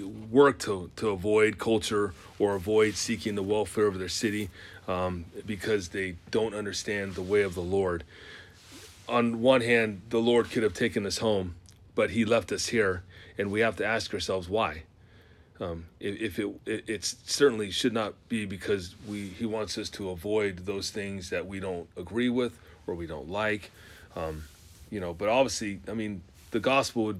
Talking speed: 180 wpm